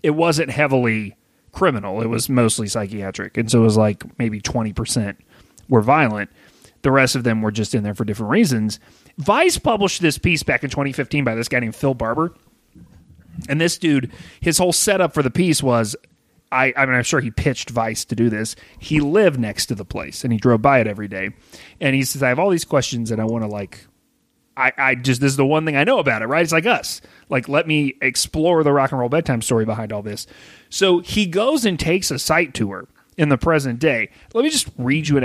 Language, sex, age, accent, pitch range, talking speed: English, male, 30-49, American, 115-155 Hz, 230 wpm